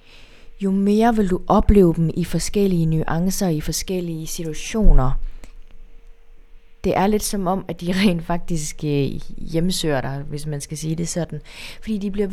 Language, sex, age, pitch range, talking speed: Danish, female, 20-39, 160-200 Hz, 155 wpm